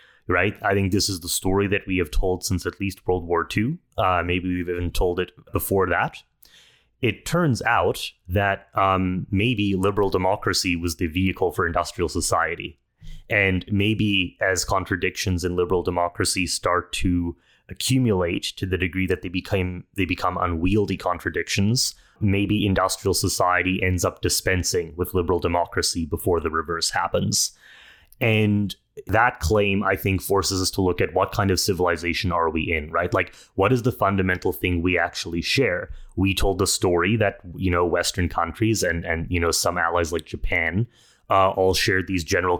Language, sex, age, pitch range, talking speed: English, male, 30-49, 90-100 Hz, 170 wpm